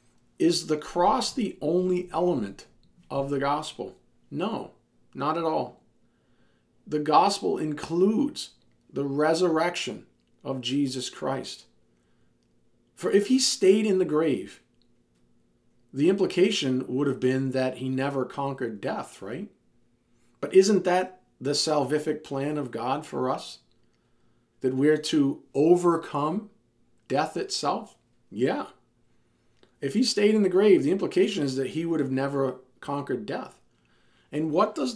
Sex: male